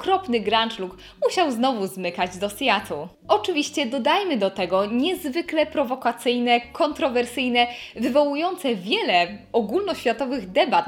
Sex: female